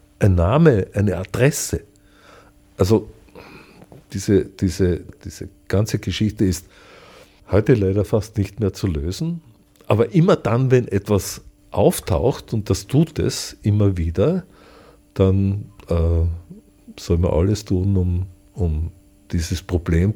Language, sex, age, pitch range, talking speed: German, male, 50-69, 90-115 Hz, 115 wpm